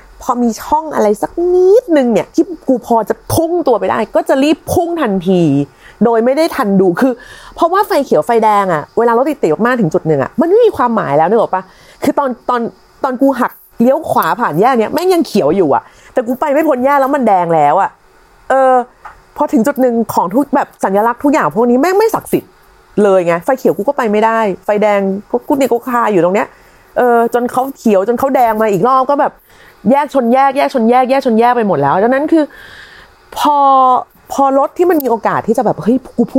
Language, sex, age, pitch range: Thai, female, 30-49, 205-285 Hz